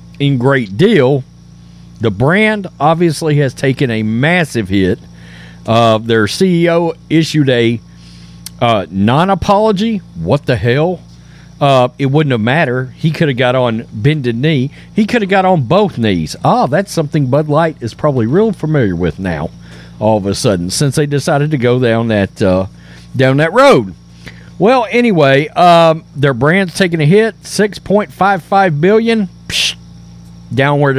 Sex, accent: male, American